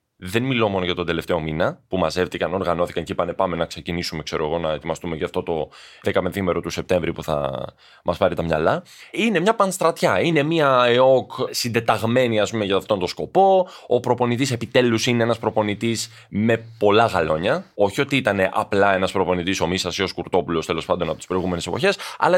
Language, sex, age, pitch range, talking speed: Greek, male, 20-39, 100-135 Hz, 190 wpm